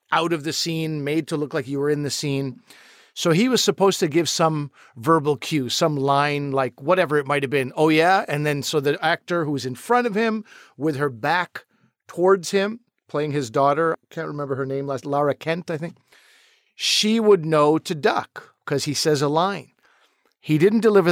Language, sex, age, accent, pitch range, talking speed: English, male, 50-69, American, 135-175 Hz, 205 wpm